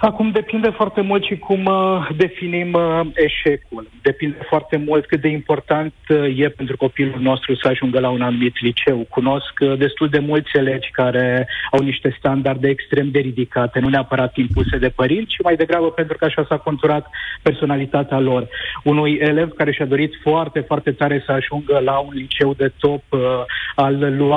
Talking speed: 175 wpm